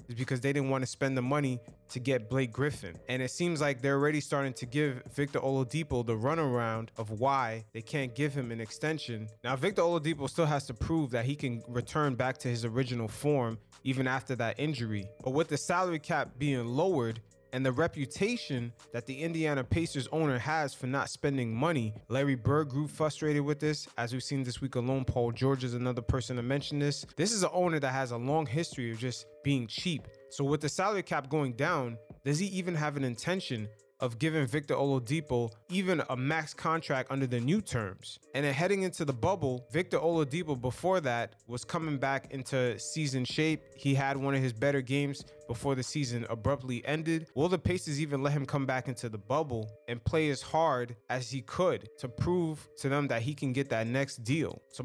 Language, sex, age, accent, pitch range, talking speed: English, male, 20-39, American, 125-150 Hz, 205 wpm